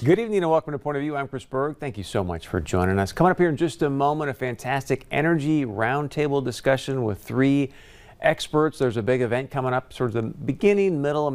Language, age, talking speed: English, 40-59, 235 wpm